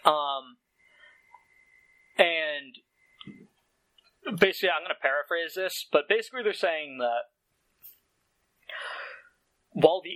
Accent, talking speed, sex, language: American, 90 wpm, male, English